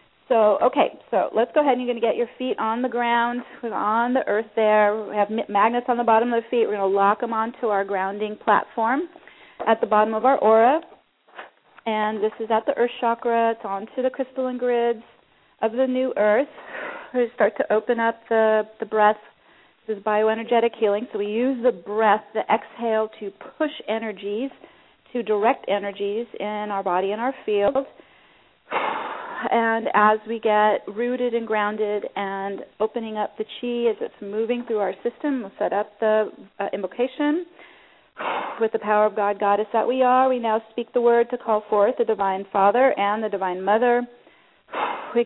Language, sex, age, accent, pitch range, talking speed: English, female, 40-59, American, 210-240 Hz, 185 wpm